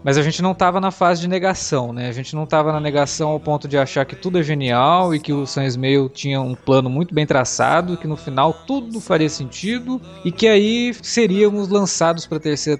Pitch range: 140-195 Hz